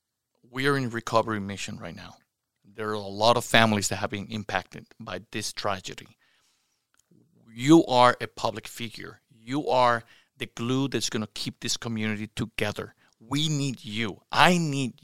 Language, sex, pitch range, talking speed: English, male, 110-145 Hz, 165 wpm